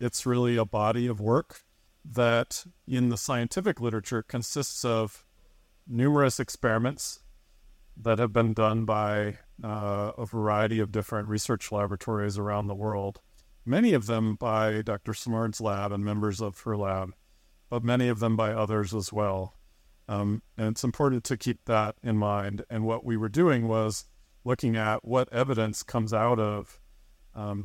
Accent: American